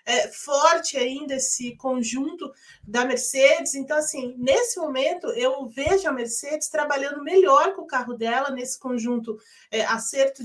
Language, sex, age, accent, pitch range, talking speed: Portuguese, female, 30-49, Brazilian, 240-300 Hz, 130 wpm